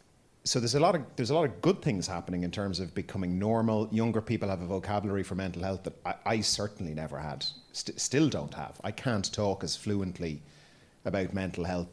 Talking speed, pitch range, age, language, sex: 215 wpm, 85-110 Hz, 30-49, English, male